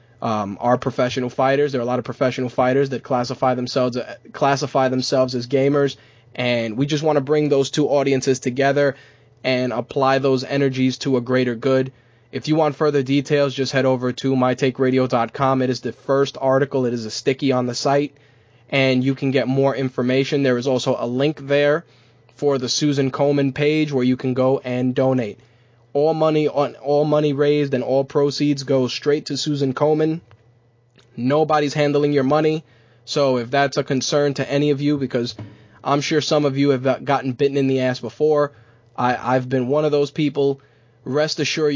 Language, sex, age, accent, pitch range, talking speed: English, male, 20-39, American, 125-140 Hz, 190 wpm